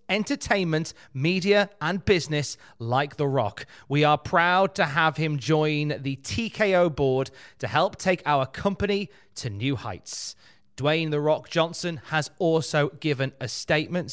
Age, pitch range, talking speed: 30-49, 130-175 Hz, 145 wpm